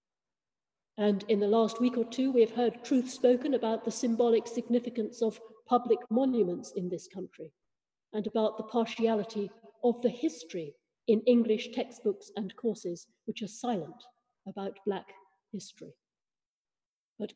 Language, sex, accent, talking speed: English, female, British, 140 wpm